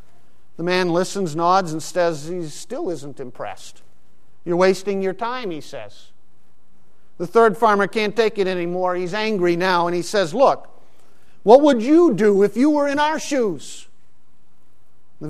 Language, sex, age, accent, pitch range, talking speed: English, male, 50-69, American, 155-205 Hz, 160 wpm